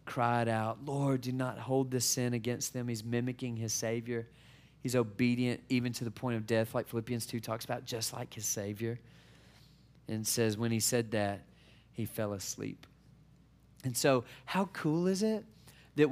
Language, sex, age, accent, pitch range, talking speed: English, male, 40-59, American, 125-170 Hz, 175 wpm